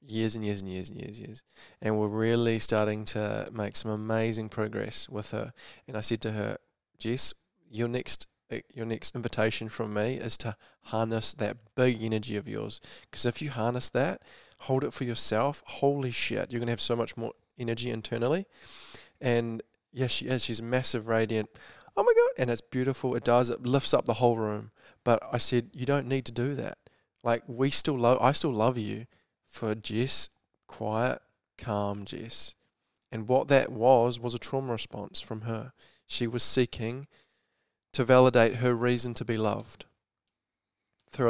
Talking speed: 180 wpm